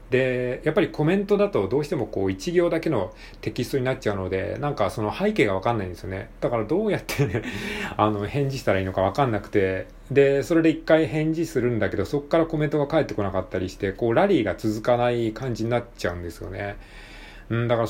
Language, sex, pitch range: Japanese, male, 100-140 Hz